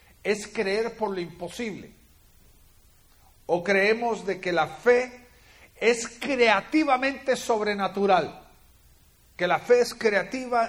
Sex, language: male, Spanish